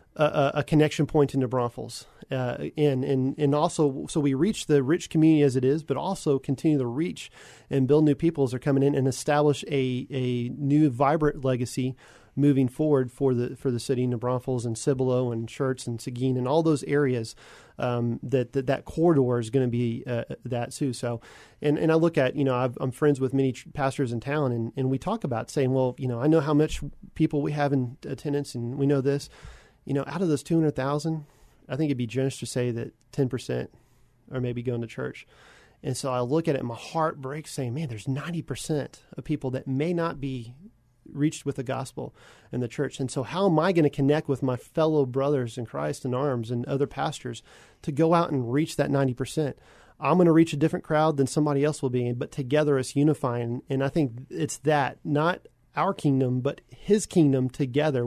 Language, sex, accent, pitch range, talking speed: English, male, American, 130-150 Hz, 220 wpm